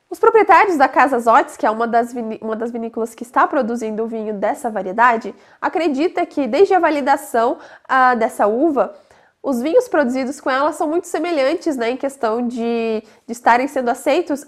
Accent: Brazilian